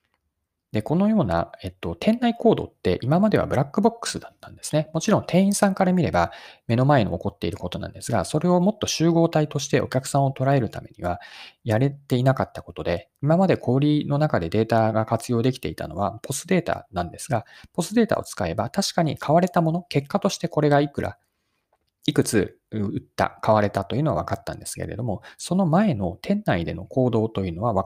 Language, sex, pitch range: Japanese, male, 100-155 Hz